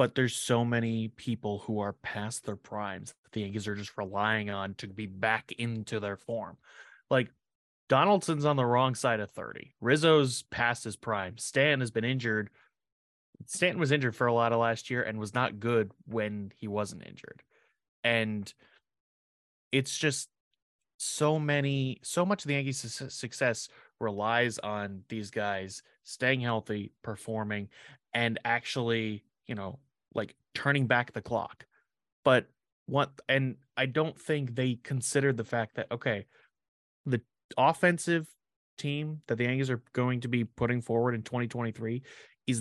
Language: English